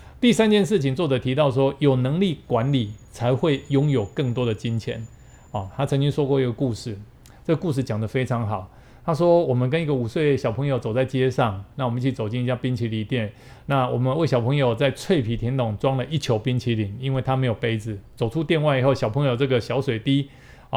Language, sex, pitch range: Chinese, male, 120-145 Hz